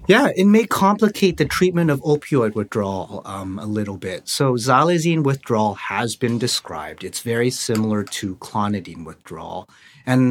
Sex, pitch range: male, 110-145 Hz